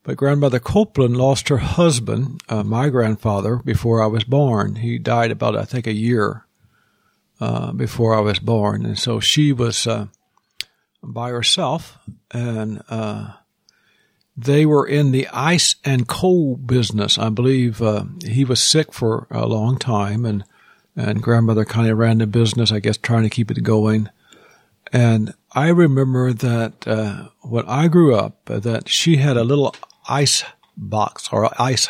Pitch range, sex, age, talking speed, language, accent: 110-135 Hz, male, 60-79, 160 wpm, English, American